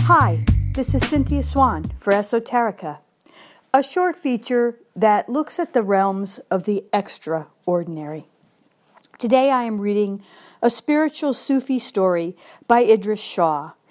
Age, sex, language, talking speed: 50-69, female, English, 125 wpm